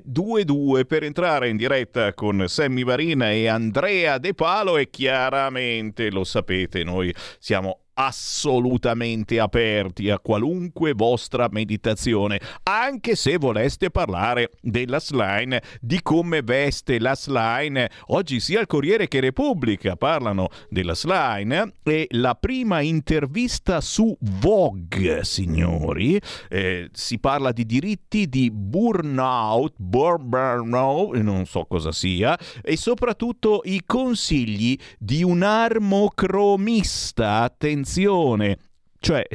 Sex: male